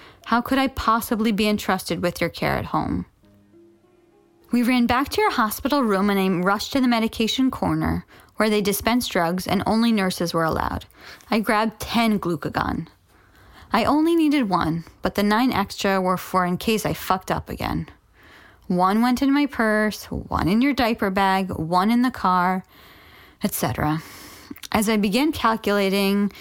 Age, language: 20-39, English